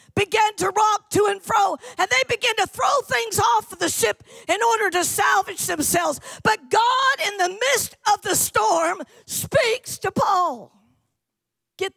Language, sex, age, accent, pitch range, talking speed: English, female, 50-69, American, 290-415 Hz, 165 wpm